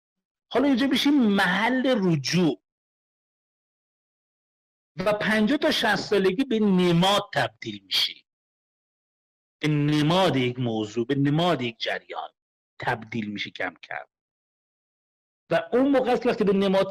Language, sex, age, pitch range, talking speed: Persian, male, 50-69, 155-210 Hz, 115 wpm